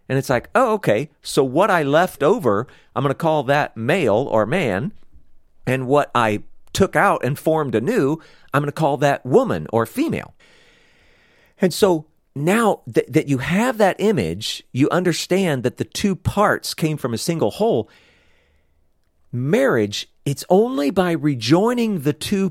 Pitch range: 110-170 Hz